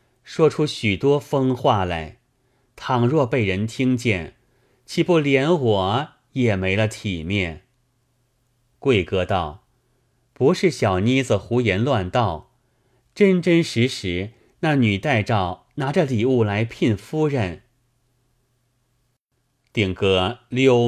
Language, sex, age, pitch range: Chinese, male, 30-49, 110-130 Hz